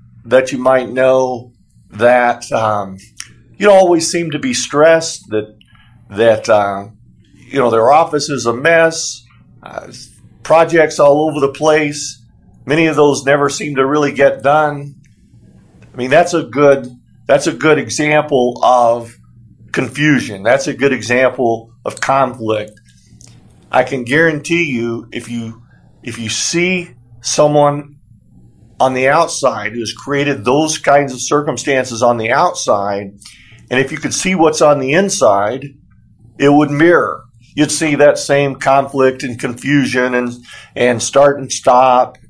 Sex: male